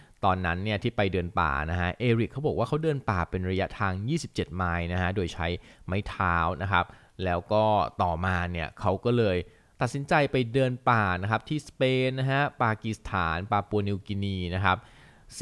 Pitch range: 90-120 Hz